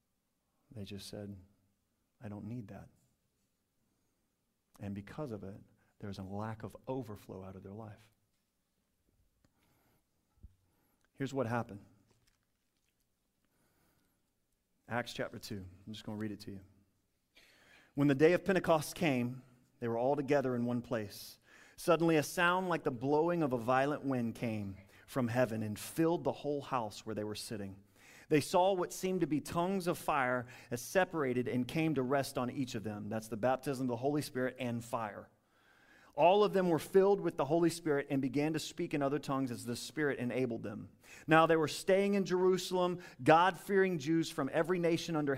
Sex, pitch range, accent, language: male, 120-175 Hz, American, English